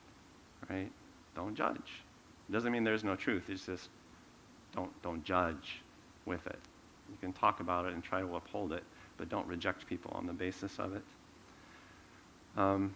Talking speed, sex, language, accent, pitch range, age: 165 wpm, male, English, American, 90-105 Hz, 50-69